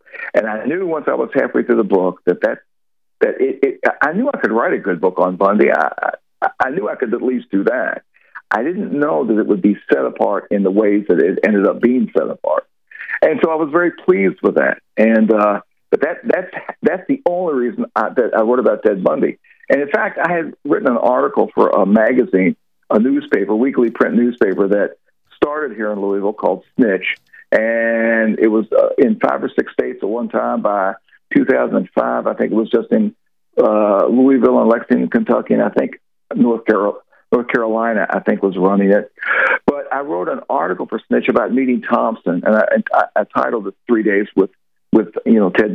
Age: 60-79